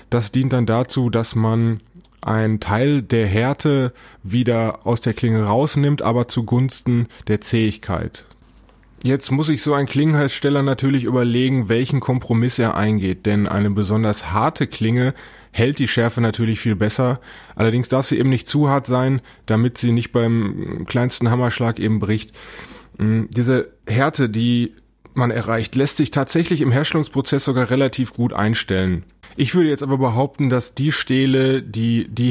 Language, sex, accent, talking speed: German, male, German, 150 wpm